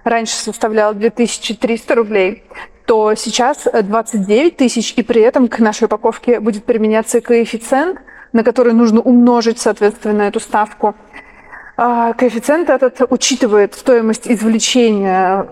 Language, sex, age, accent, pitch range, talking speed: Russian, female, 30-49, native, 205-250 Hz, 110 wpm